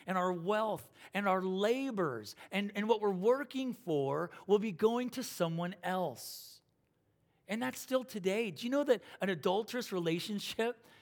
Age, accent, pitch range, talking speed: 40-59, American, 180-230 Hz, 160 wpm